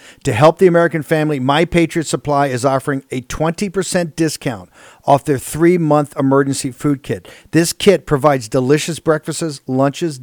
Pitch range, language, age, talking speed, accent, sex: 130-160 Hz, English, 50-69, 145 wpm, American, male